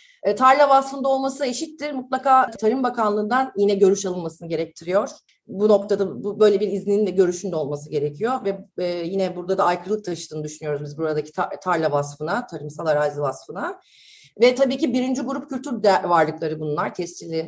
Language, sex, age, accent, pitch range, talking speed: Turkish, female, 30-49, native, 165-245 Hz, 150 wpm